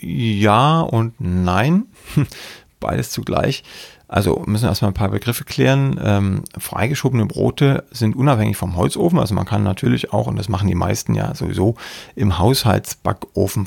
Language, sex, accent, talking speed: German, male, German, 150 wpm